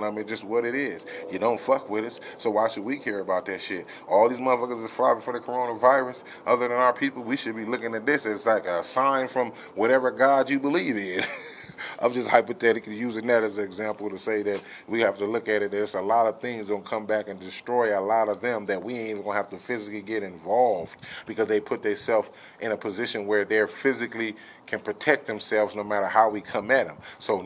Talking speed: 240 wpm